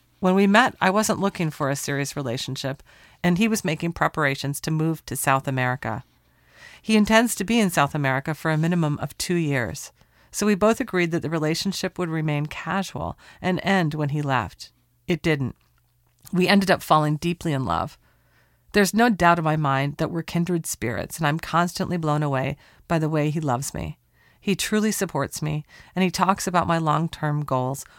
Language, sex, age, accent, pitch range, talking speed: English, female, 40-59, American, 135-180 Hz, 190 wpm